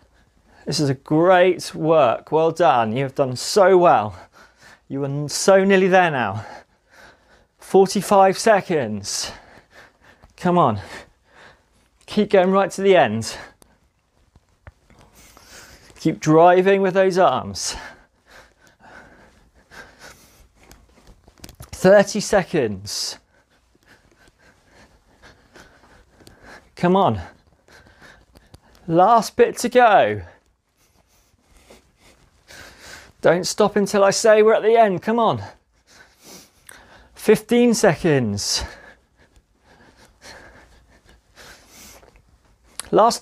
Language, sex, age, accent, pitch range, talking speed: English, male, 30-49, British, 130-215 Hz, 75 wpm